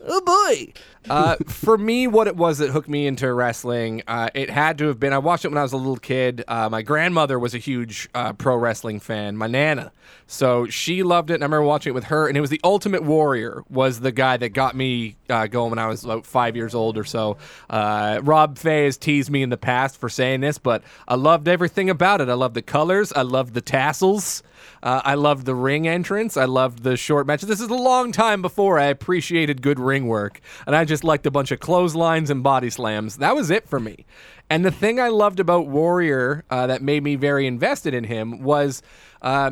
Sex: male